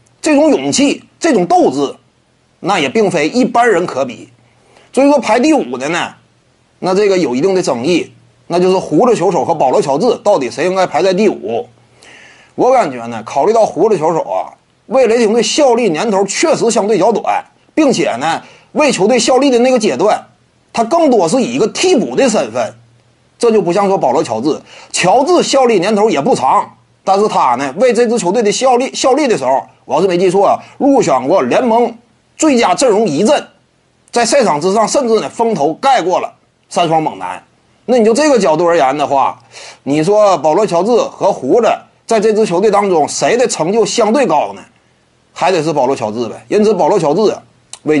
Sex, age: male, 30-49